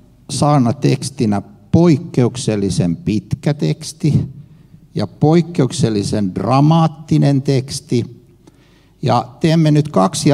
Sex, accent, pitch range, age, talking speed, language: male, native, 115-150 Hz, 60-79, 75 wpm, Finnish